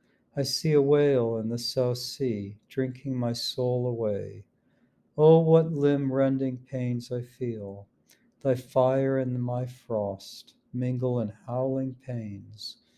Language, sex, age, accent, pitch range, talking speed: English, male, 60-79, American, 115-135 Hz, 125 wpm